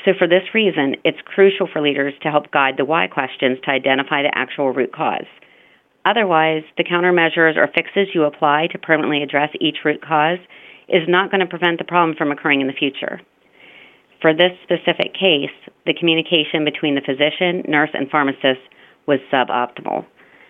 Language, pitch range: English, 140-165 Hz